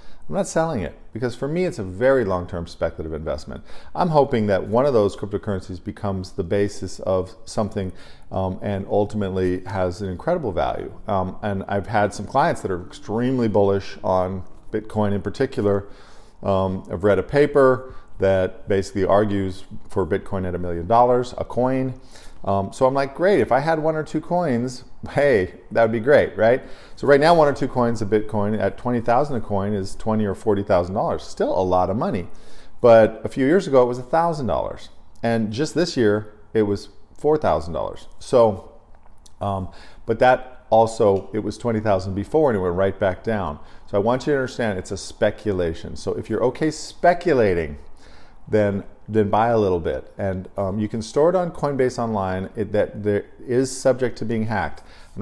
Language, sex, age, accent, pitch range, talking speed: English, male, 40-59, American, 95-120 Hz, 185 wpm